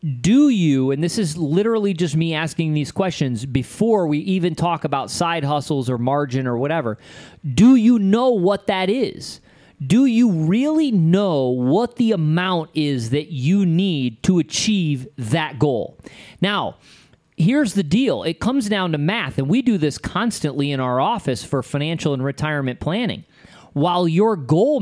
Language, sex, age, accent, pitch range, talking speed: English, male, 40-59, American, 145-190 Hz, 165 wpm